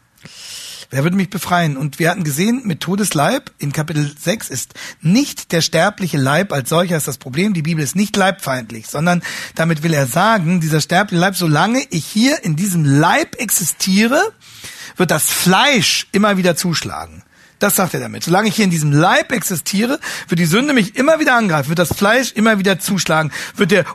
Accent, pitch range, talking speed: German, 140-200 Hz, 190 wpm